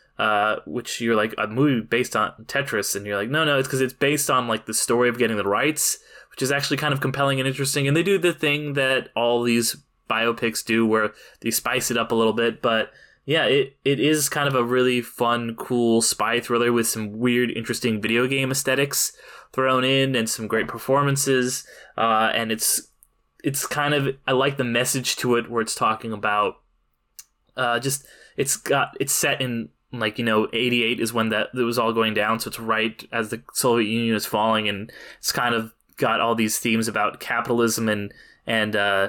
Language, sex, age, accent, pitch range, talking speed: English, male, 20-39, American, 115-135 Hz, 205 wpm